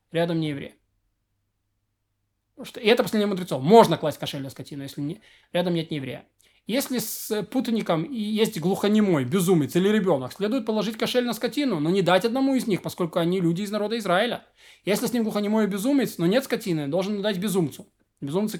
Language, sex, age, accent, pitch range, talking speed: Russian, male, 20-39, native, 165-215 Hz, 185 wpm